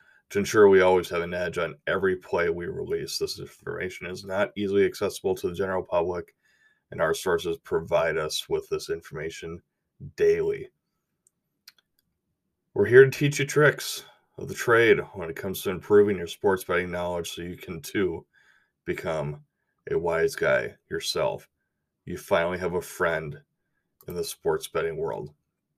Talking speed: 160 wpm